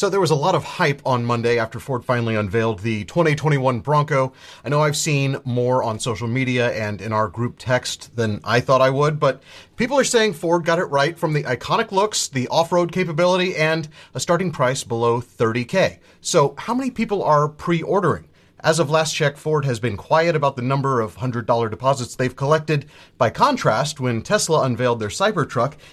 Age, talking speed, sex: 30-49, 195 wpm, male